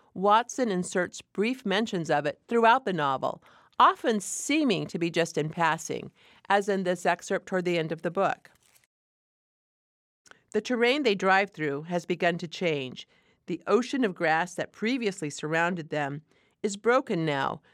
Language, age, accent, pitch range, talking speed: English, 50-69, American, 160-200 Hz, 155 wpm